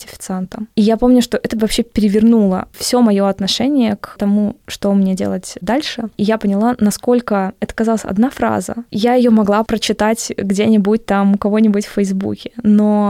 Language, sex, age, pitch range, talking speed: Russian, female, 20-39, 200-225 Hz, 160 wpm